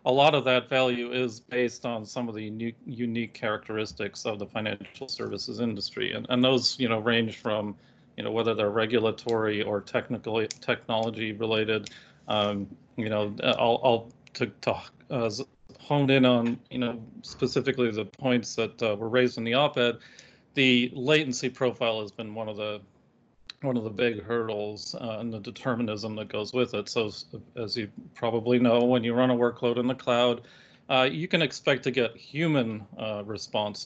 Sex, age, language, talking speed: male, 40-59, English, 175 wpm